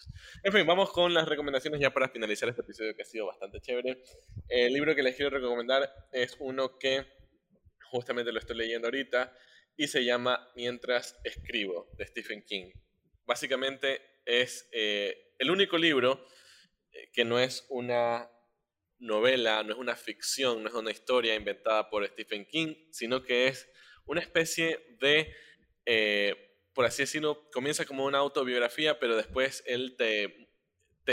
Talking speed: 155 wpm